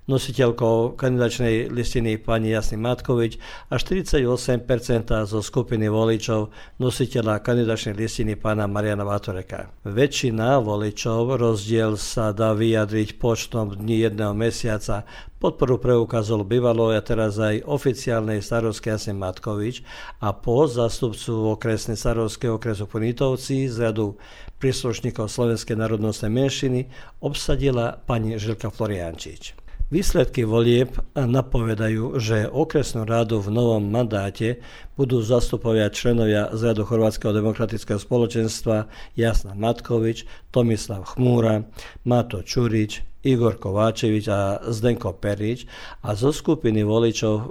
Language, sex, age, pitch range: Croatian, male, 50-69, 110-120 Hz